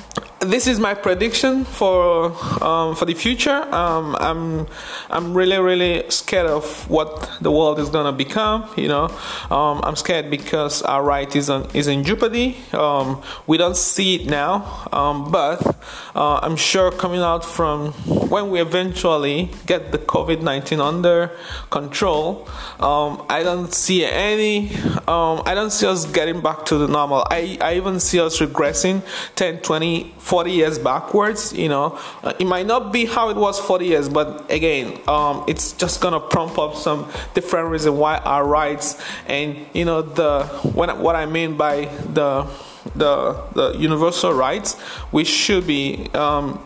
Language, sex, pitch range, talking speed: English, male, 150-185 Hz, 165 wpm